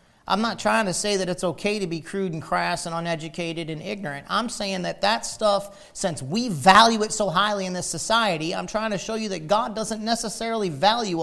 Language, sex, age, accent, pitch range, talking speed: English, male, 40-59, American, 155-215 Hz, 220 wpm